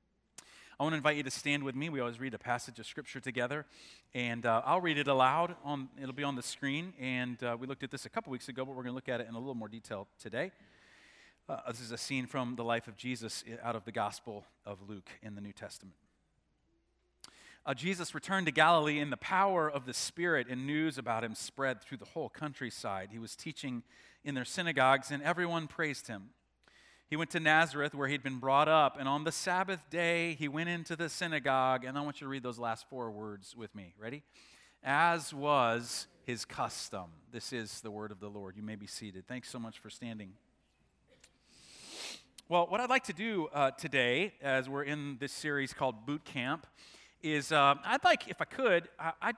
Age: 40-59